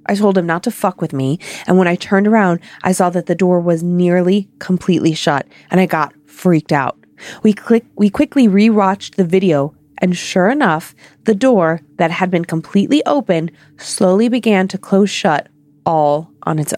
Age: 20-39